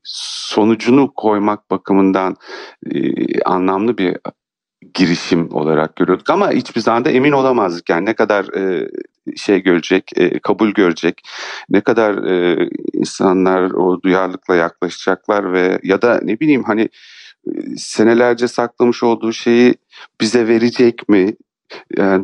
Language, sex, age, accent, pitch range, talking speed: Turkish, male, 40-59, native, 95-120 Hz, 110 wpm